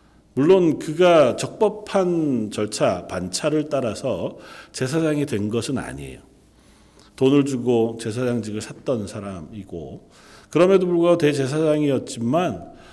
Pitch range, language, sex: 105-155 Hz, Korean, male